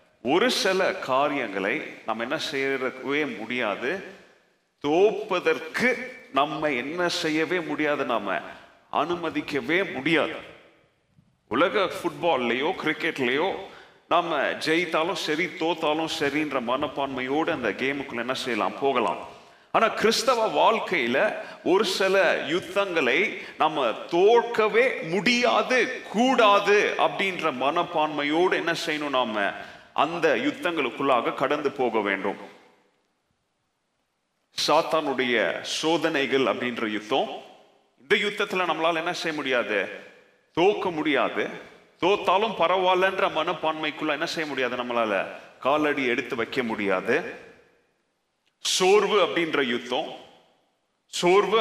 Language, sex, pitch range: Tamil, male, 140-190 Hz